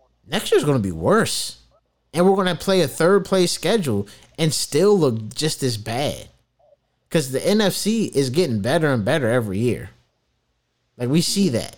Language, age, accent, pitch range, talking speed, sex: English, 30-49, American, 125-180 Hz, 185 wpm, male